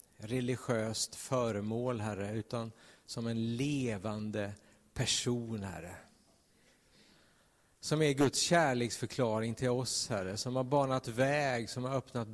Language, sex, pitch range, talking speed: Swedish, male, 115-145 Hz, 110 wpm